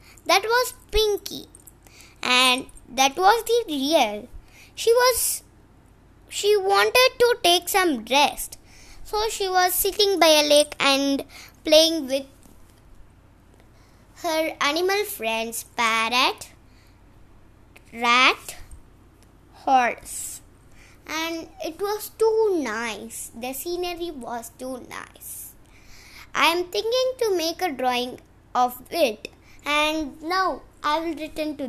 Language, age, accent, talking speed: Tamil, 20-39, native, 110 wpm